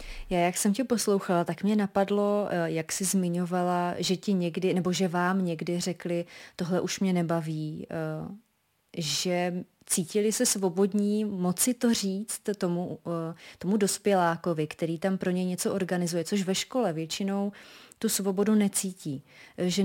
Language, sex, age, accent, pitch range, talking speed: Czech, female, 30-49, native, 165-190 Hz, 140 wpm